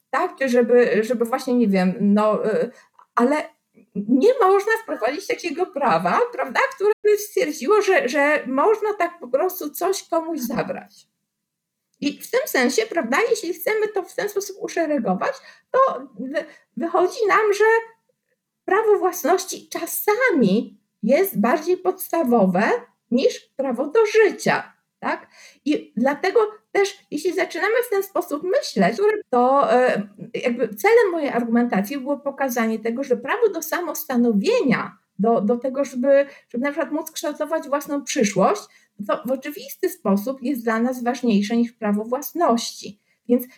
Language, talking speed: Polish, 135 wpm